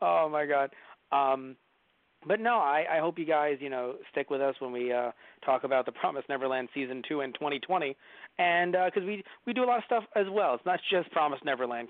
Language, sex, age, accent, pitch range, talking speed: English, male, 40-59, American, 130-160 Hz, 225 wpm